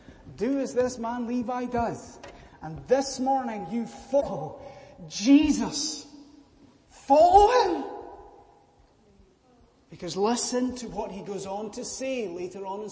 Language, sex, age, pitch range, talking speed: English, male, 30-49, 155-245 Hz, 120 wpm